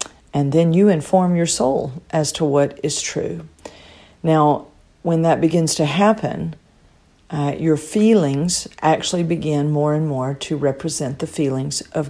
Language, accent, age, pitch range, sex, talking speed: English, American, 50-69, 145-185 Hz, female, 150 wpm